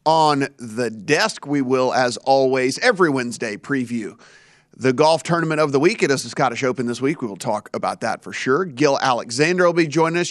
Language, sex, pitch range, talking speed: English, male, 130-160 Hz, 210 wpm